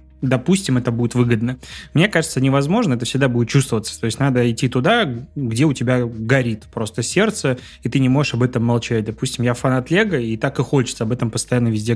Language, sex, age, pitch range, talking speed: Russian, male, 20-39, 120-145 Hz, 205 wpm